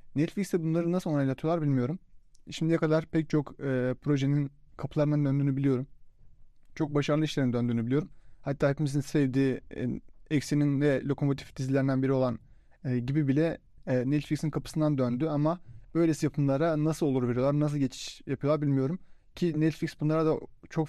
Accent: native